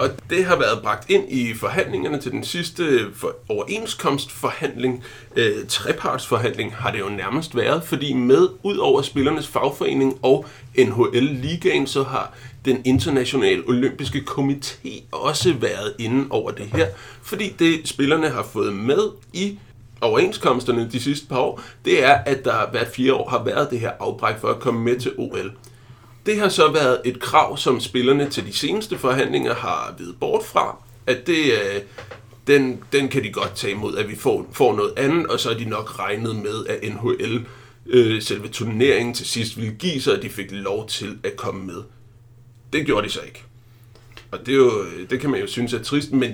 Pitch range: 120-145 Hz